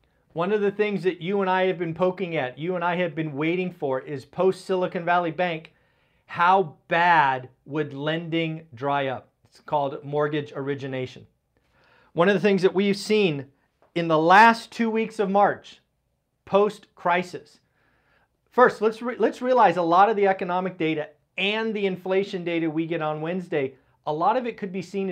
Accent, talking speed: American, 175 wpm